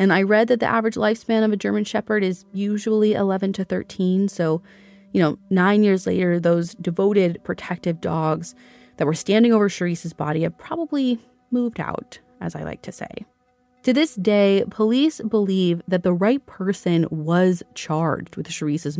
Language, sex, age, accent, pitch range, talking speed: English, female, 30-49, American, 165-220 Hz, 170 wpm